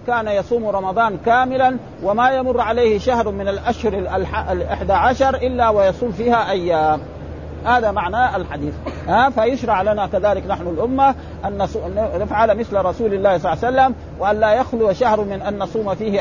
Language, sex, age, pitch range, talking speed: Arabic, male, 50-69, 195-245 Hz, 155 wpm